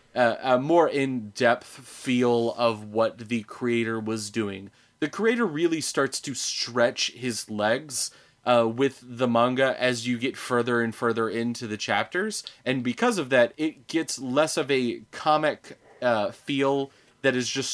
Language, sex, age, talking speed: English, male, 30-49, 160 wpm